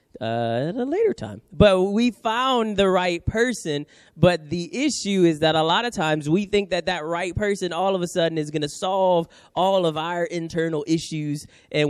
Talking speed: 200 wpm